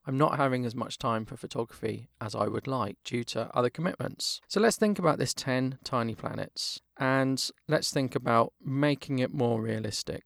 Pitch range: 115-150 Hz